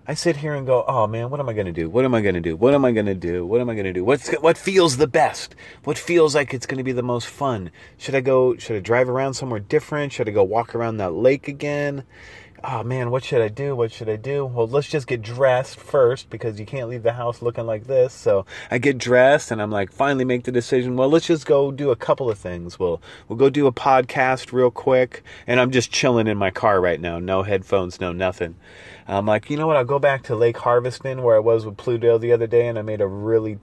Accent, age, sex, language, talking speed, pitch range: American, 30-49, male, English, 275 wpm, 105-130 Hz